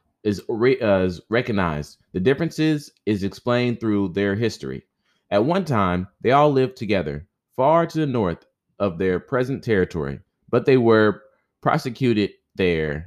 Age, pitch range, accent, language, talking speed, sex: 30-49, 95-115 Hz, American, English, 140 wpm, male